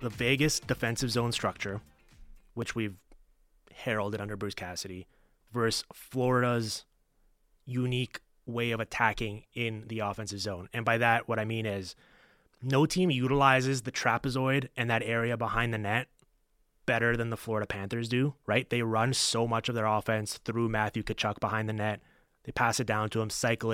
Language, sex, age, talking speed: English, male, 20-39, 165 wpm